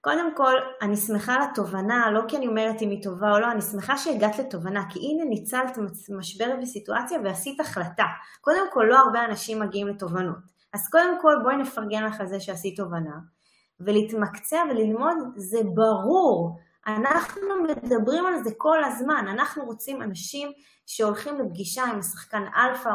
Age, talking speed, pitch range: 20-39, 160 wpm, 200-265 Hz